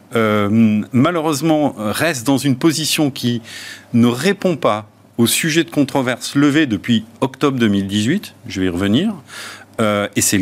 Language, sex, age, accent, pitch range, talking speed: French, male, 50-69, French, 110-155 Hz, 145 wpm